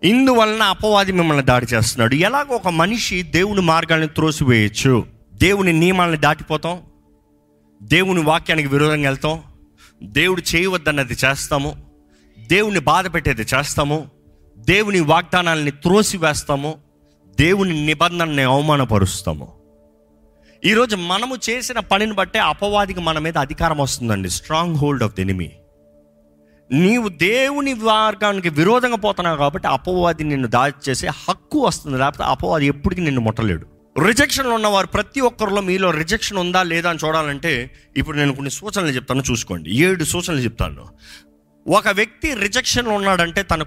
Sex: male